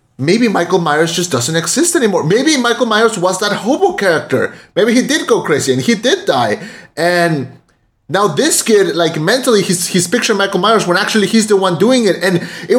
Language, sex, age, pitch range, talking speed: English, male, 30-49, 175-240 Hz, 200 wpm